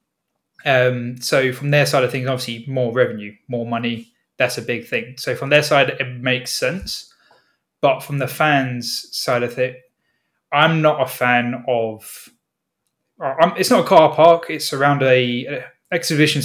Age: 20-39